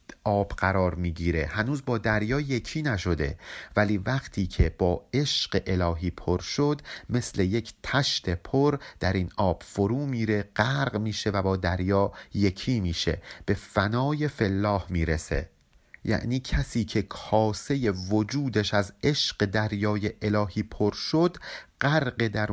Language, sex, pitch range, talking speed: Persian, male, 95-125 Hz, 130 wpm